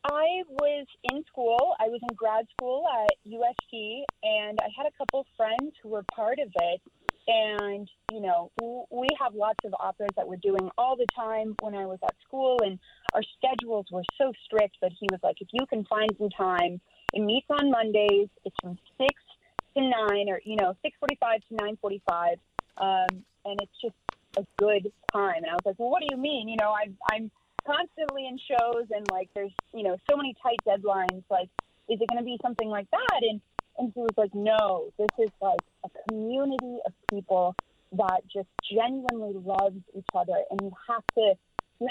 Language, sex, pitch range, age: English, female, 200-250 Hz, 30-49